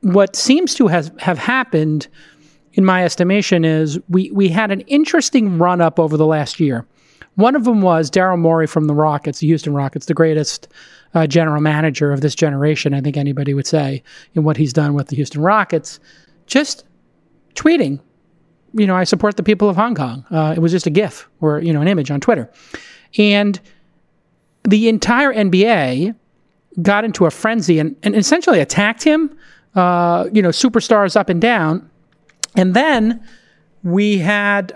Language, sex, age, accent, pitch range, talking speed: English, male, 40-59, American, 155-210 Hz, 175 wpm